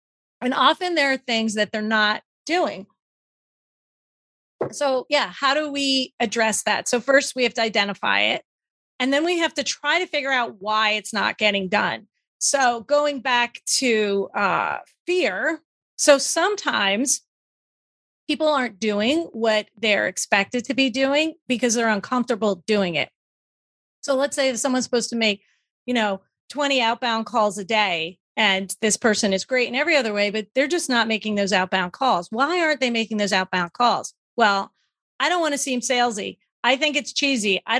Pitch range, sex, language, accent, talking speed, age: 215-285 Hz, female, English, American, 175 wpm, 30-49